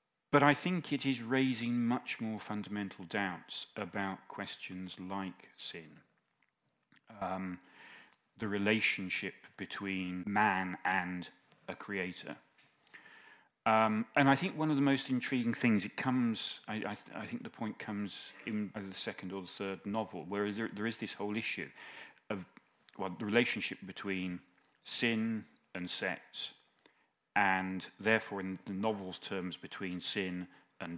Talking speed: 140 wpm